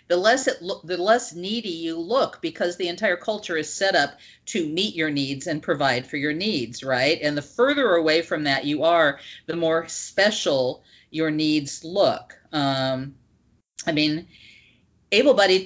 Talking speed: 170 wpm